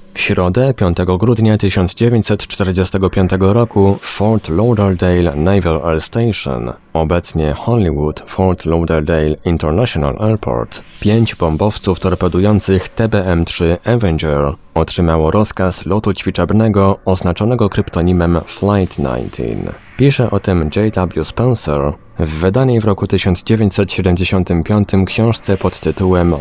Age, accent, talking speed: 20-39, native, 100 wpm